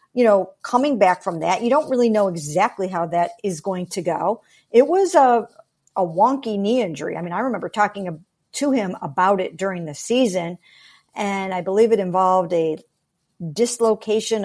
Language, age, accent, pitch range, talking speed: English, 50-69, American, 180-240 Hz, 180 wpm